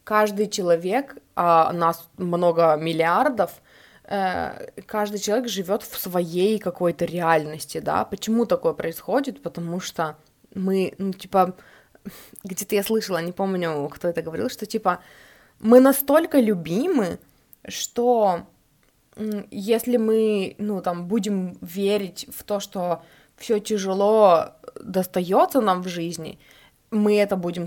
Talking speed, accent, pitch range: 115 wpm, native, 175-220 Hz